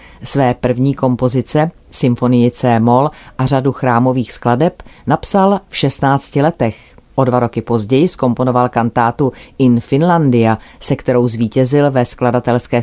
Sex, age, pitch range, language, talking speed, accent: female, 40-59, 120-140 Hz, Czech, 120 wpm, native